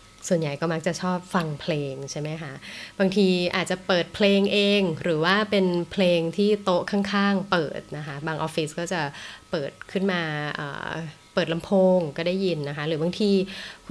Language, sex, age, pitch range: Thai, female, 20-39, 155-195 Hz